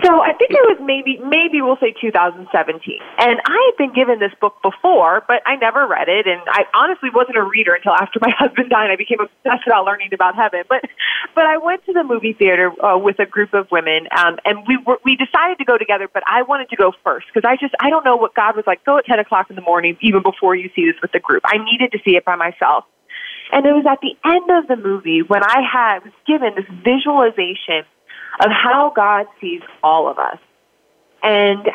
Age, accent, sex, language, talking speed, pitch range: 30-49, American, female, English, 235 wpm, 195-275 Hz